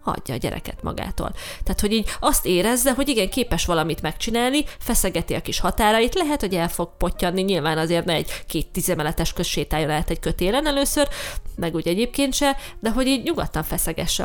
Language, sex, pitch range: Hungarian, female, 170-225 Hz